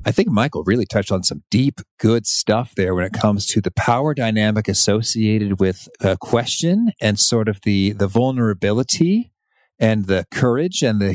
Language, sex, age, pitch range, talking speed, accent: English, male, 40-59, 100-120 Hz, 180 wpm, American